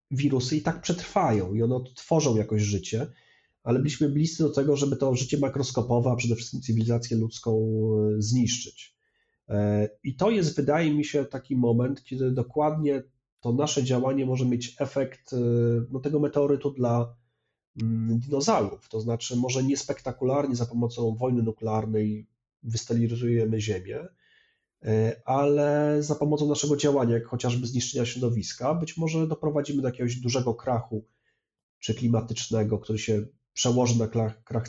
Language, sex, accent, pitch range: Polish, male, native, 115-140 Hz